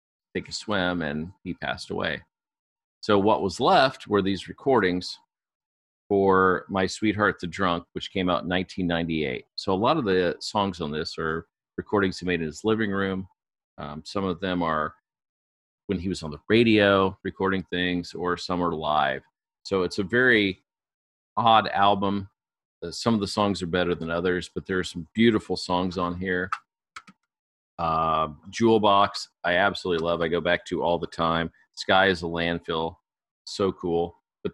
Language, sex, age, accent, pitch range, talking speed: English, male, 40-59, American, 80-100 Hz, 175 wpm